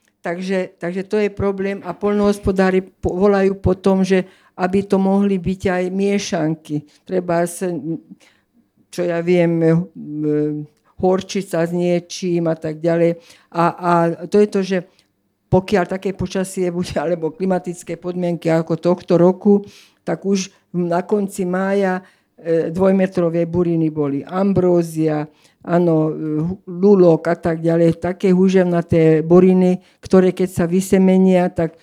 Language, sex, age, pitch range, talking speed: Slovak, female, 50-69, 165-190 Hz, 125 wpm